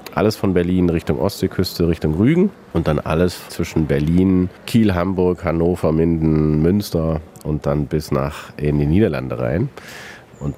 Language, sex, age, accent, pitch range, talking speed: German, male, 40-59, German, 75-95 Hz, 145 wpm